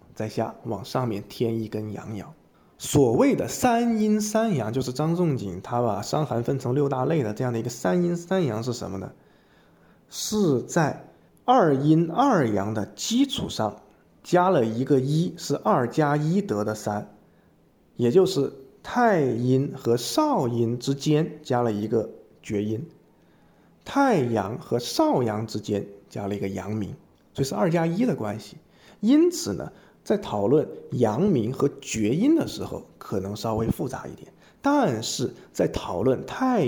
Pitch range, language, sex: 110-185 Hz, Chinese, male